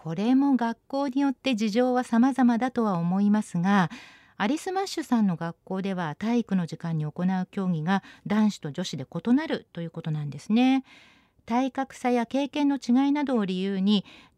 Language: Japanese